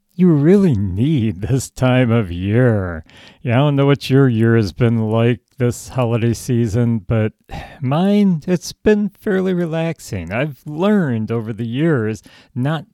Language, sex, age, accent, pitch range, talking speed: English, male, 40-59, American, 120-155 Hz, 150 wpm